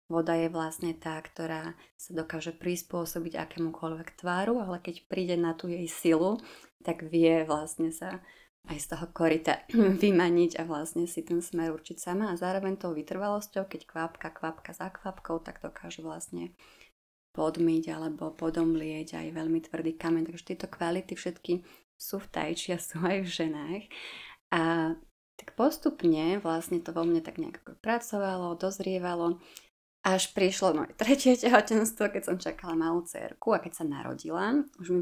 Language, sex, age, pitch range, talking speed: Slovak, female, 20-39, 165-190 Hz, 155 wpm